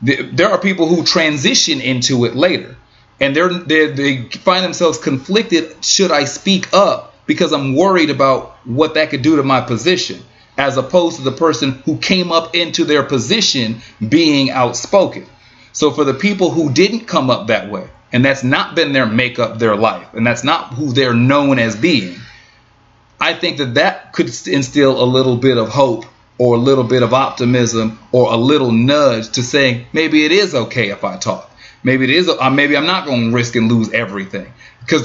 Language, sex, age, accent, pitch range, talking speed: English, male, 30-49, American, 125-165 Hz, 190 wpm